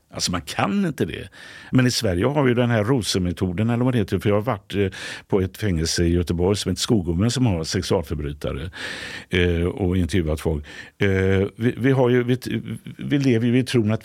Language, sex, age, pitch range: Swedish, male, 60-79, 85-110 Hz